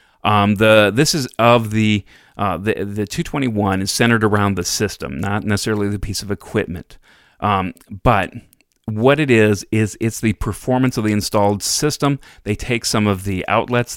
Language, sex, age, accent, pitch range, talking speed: English, male, 40-59, American, 95-115 Hz, 170 wpm